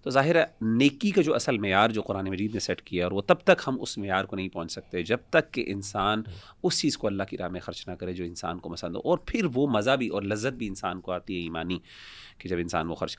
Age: 30-49